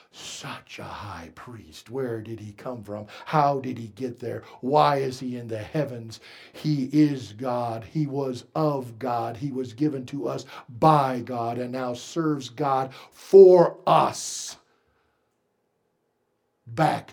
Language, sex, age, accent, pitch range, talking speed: English, male, 60-79, American, 115-155 Hz, 145 wpm